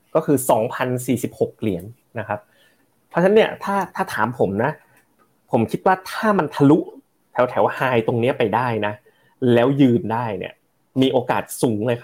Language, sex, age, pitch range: Thai, male, 20-39, 110-140 Hz